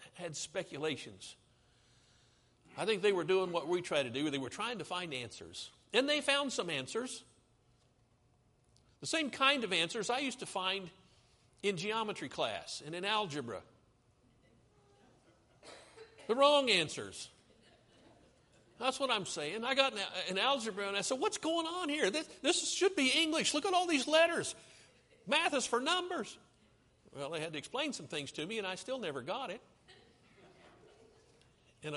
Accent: American